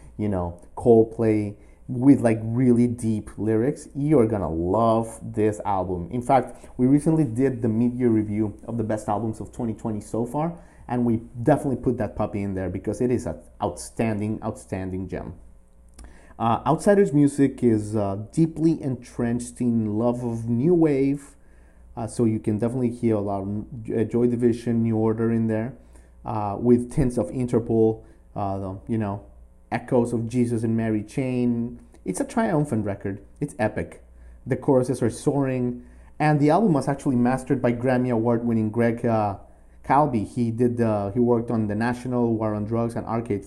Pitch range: 105-125 Hz